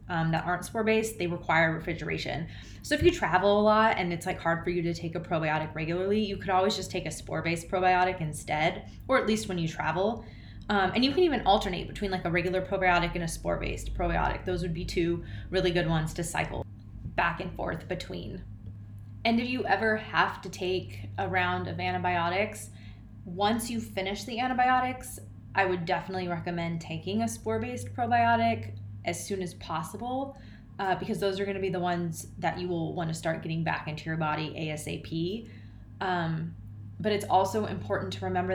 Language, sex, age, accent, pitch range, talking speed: English, female, 20-39, American, 155-195 Hz, 190 wpm